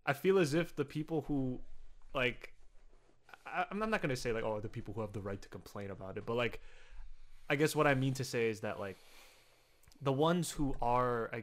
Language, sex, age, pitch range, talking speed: English, male, 20-39, 110-135 Hz, 220 wpm